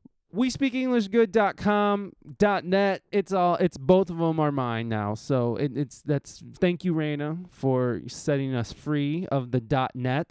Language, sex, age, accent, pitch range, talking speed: English, male, 20-39, American, 130-175 Hz, 165 wpm